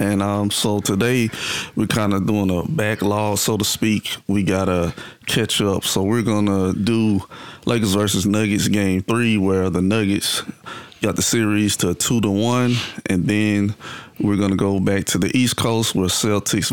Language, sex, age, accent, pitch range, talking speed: English, male, 30-49, American, 95-110 Hz, 185 wpm